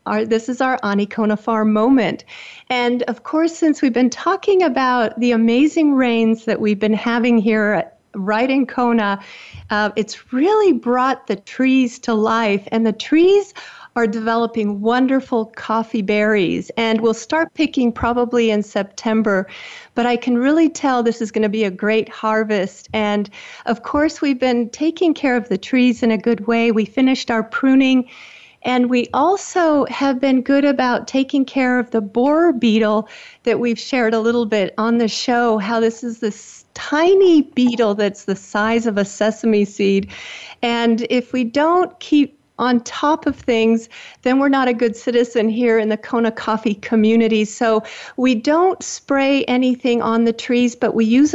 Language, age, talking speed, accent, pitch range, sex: English, 40-59, 170 wpm, American, 220-265 Hz, female